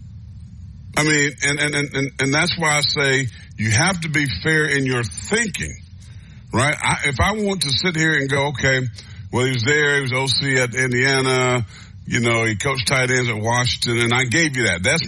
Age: 50-69